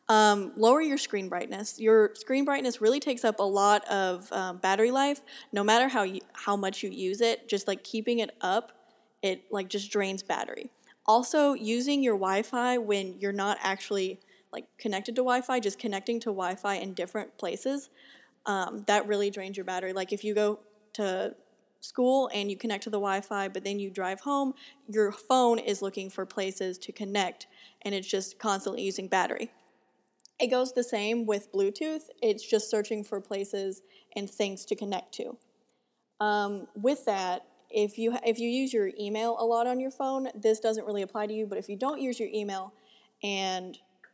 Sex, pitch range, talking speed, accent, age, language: female, 200-240 Hz, 185 wpm, American, 10-29, English